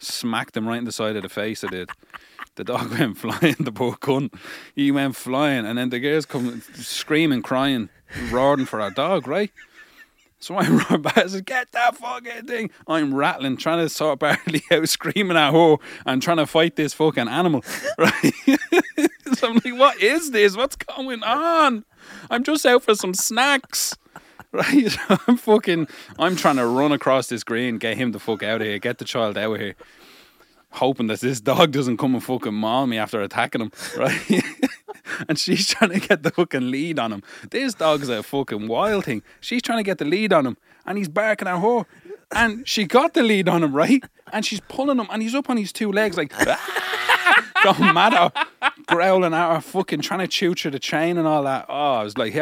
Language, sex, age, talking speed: English, male, 30-49, 205 wpm